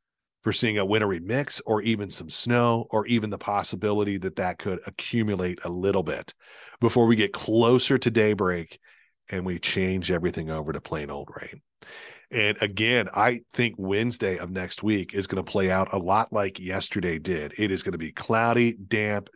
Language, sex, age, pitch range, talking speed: English, male, 40-59, 95-120 Hz, 185 wpm